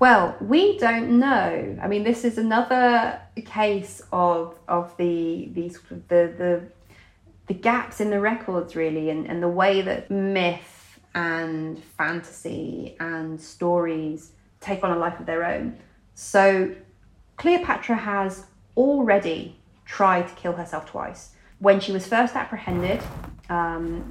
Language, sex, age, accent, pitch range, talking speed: English, female, 30-49, British, 165-205 Hz, 130 wpm